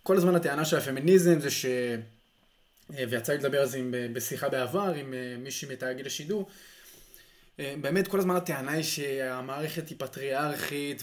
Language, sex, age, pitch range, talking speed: Hebrew, male, 20-39, 130-165 Hz, 145 wpm